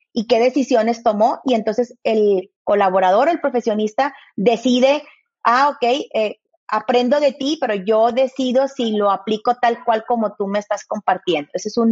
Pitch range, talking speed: 225-270 Hz, 165 wpm